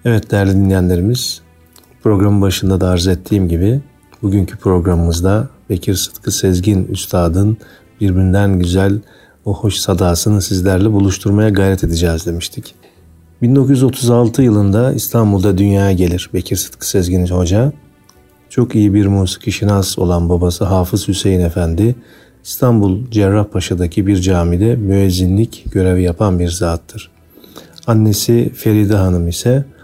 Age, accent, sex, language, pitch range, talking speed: 40-59, native, male, Turkish, 90-105 Hz, 115 wpm